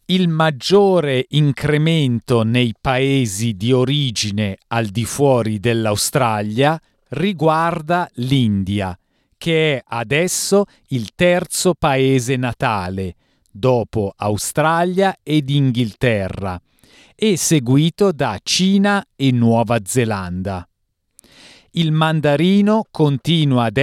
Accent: native